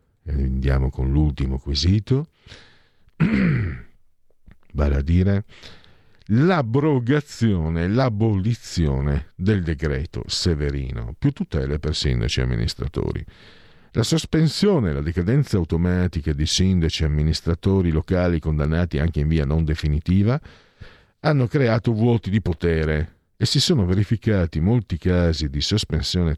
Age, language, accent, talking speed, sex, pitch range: 50-69, Italian, native, 110 wpm, male, 80-115 Hz